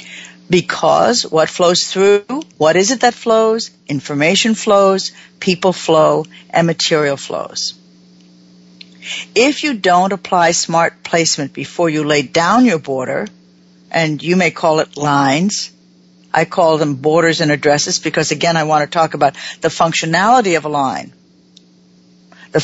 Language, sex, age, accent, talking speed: English, female, 60-79, American, 140 wpm